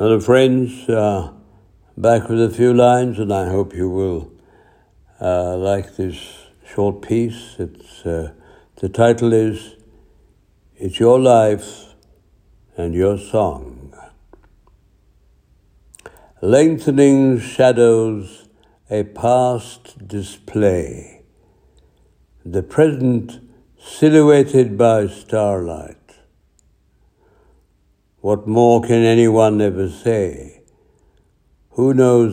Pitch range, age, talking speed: 95-115 Hz, 60-79, 90 wpm